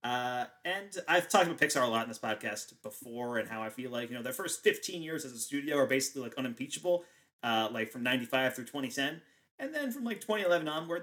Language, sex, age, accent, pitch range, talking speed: English, male, 30-49, American, 115-150 Hz, 230 wpm